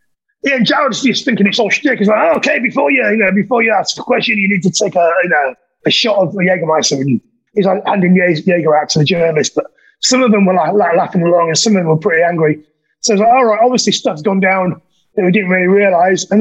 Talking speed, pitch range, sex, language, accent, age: 265 wpm, 190-230 Hz, male, English, British, 30-49